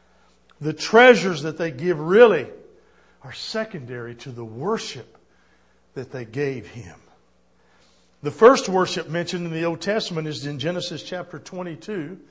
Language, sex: English, male